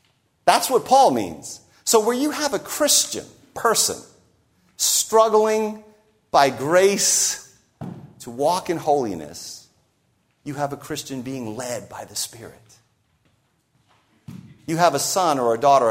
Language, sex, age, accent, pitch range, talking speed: English, male, 40-59, American, 140-215 Hz, 130 wpm